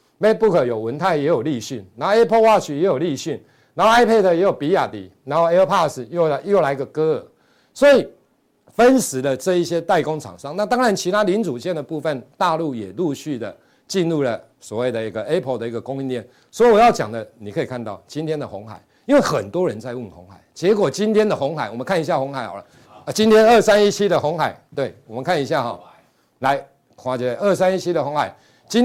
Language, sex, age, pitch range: Chinese, male, 50-69, 115-195 Hz